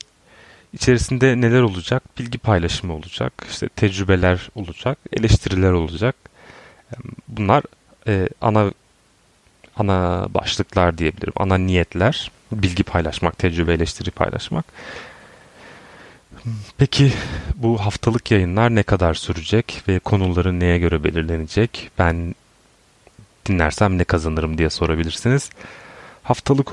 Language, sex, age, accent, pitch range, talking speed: Turkish, male, 30-49, native, 85-110 Hz, 95 wpm